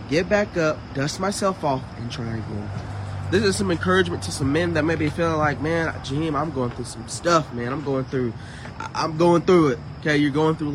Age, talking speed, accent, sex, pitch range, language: 20-39, 230 wpm, American, male, 125-170 Hz, English